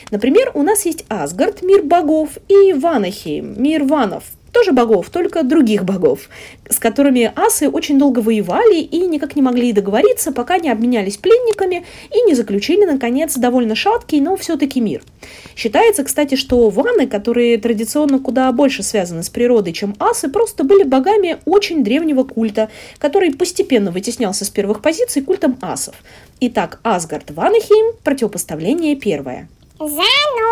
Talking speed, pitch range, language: 140 wpm, 215-345 Hz, Russian